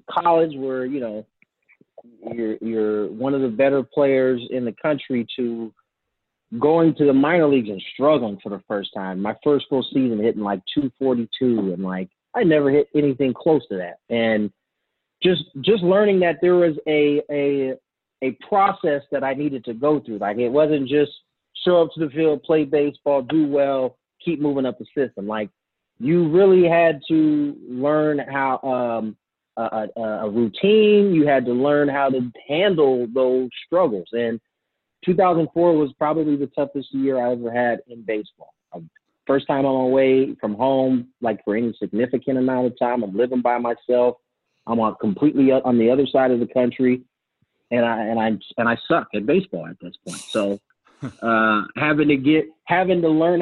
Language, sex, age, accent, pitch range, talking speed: English, male, 30-49, American, 120-150 Hz, 180 wpm